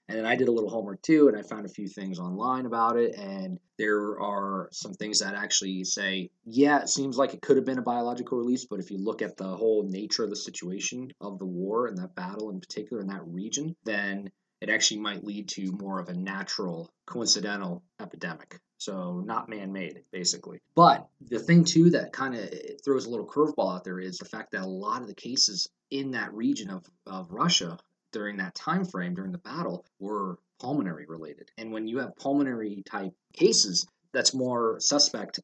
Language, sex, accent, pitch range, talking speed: English, male, American, 95-140 Hz, 205 wpm